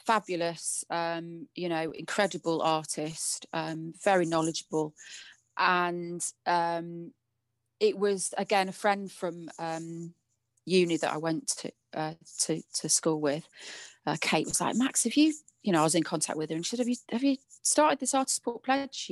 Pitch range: 165-190 Hz